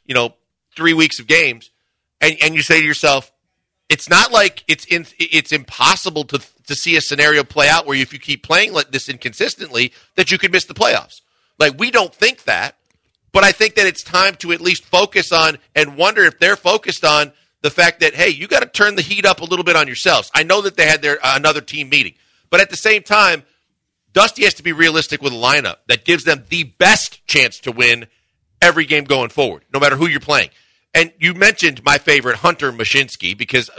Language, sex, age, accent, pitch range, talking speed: English, male, 40-59, American, 145-180 Hz, 225 wpm